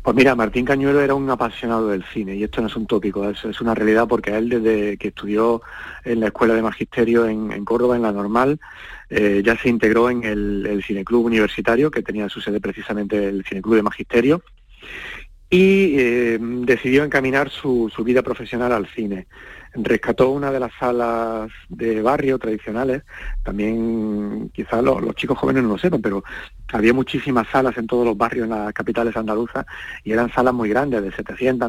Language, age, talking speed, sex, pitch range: Spanish, 40-59, 185 wpm, male, 110-125 Hz